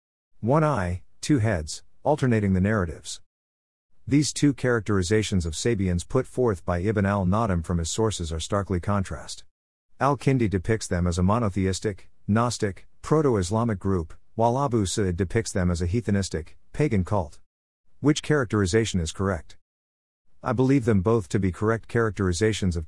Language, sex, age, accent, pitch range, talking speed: English, male, 50-69, American, 90-115 Hz, 145 wpm